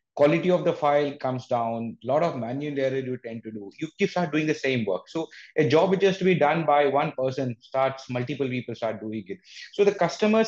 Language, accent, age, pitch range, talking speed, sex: English, Indian, 30-49, 115-150 Hz, 240 wpm, male